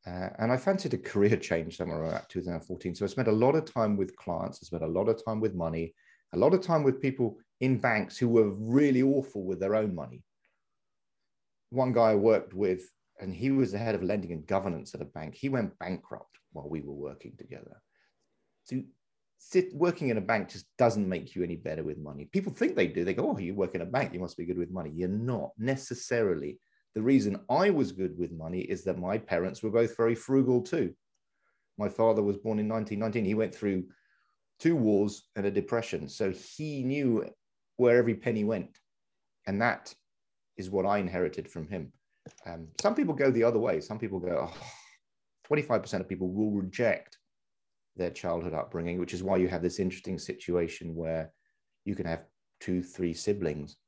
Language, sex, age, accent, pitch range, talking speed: English, male, 40-59, British, 90-120 Hz, 200 wpm